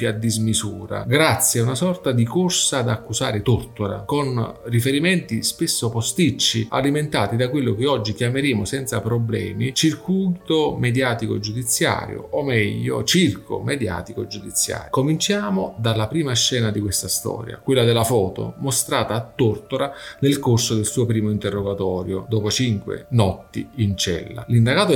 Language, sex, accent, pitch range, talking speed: Italian, male, native, 105-130 Hz, 135 wpm